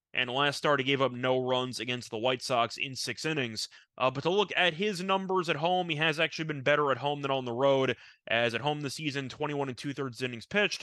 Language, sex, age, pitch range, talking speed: English, male, 20-39, 130-165 Hz, 250 wpm